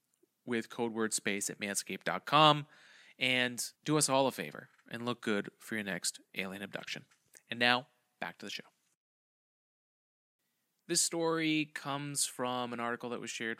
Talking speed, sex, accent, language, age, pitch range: 155 wpm, male, American, English, 30-49, 110-145 Hz